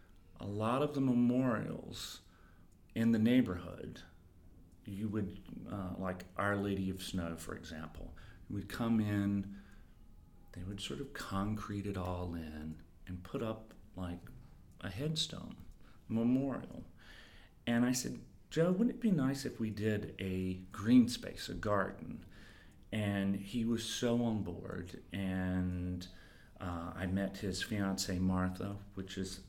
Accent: American